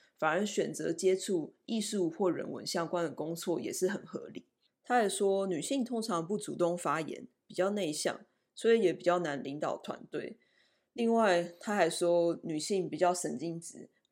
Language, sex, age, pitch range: Chinese, female, 20-39, 170-205 Hz